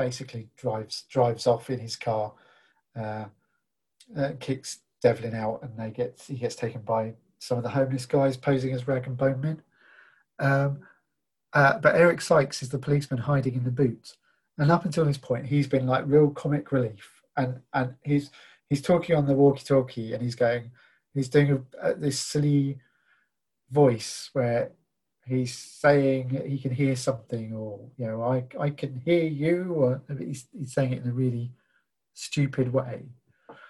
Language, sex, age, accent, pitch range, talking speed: English, male, 40-59, British, 125-145 Hz, 170 wpm